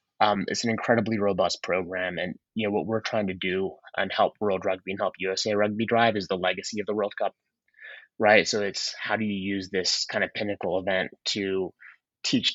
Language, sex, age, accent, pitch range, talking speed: English, male, 20-39, American, 95-100 Hz, 210 wpm